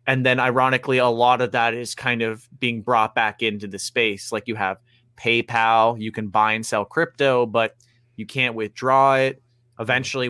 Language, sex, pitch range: English, male, 115-130 Hz